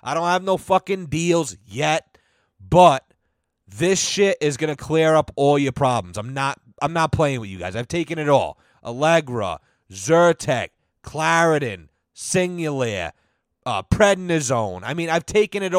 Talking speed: 155 wpm